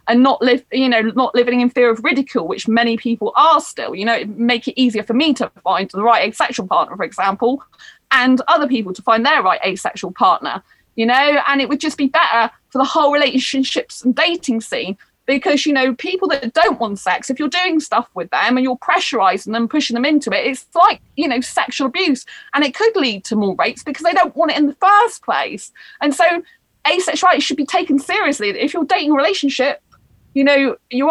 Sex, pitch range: female, 245-325 Hz